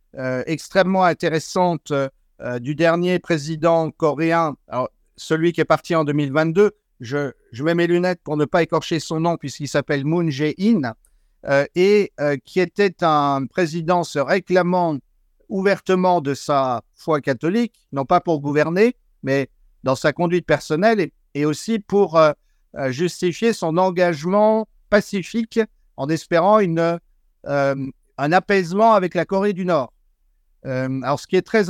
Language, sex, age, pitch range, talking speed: French, male, 50-69, 150-190 Hz, 150 wpm